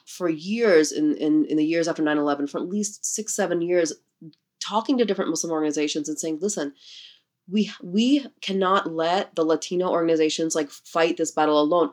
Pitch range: 155-195 Hz